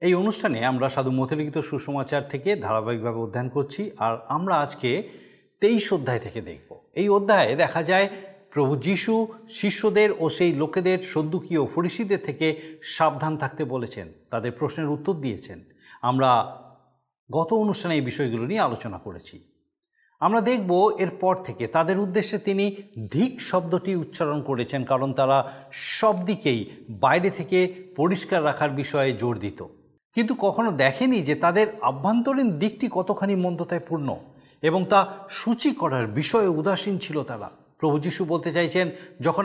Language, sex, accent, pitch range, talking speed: Bengali, male, native, 135-195 Hz, 130 wpm